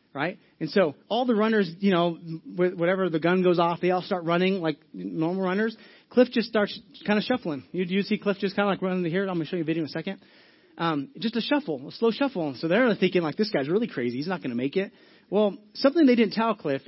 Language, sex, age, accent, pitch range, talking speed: English, male, 30-49, American, 165-215 Hz, 260 wpm